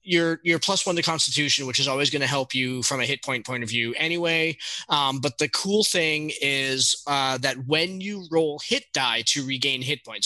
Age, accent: 20-39, American